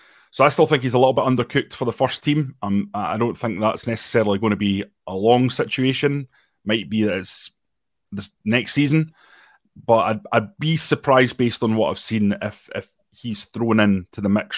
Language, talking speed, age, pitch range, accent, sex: English, 200 wpm, 30-49, 105-125 Hz, British, male